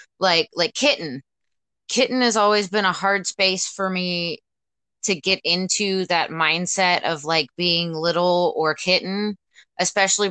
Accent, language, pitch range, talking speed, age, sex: American, English, 160-190 Hz, 140 wpm, 20-39, female